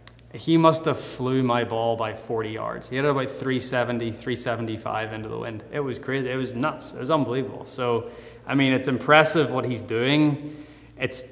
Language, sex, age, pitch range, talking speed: English, male, 20-39, 110-125 Hz, 190 wpm